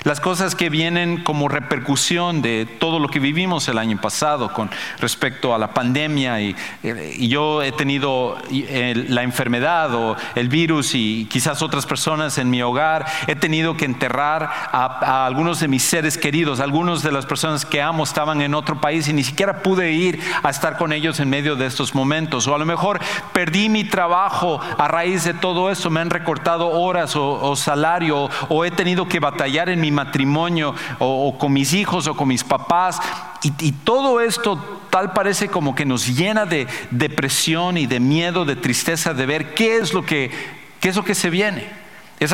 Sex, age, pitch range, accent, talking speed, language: male, 40-59, 135-175 Hz, Mexican, 195 wpm, English